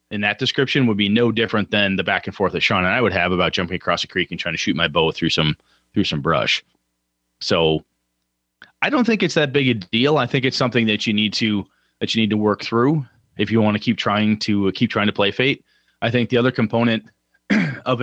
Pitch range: 95-125 Hz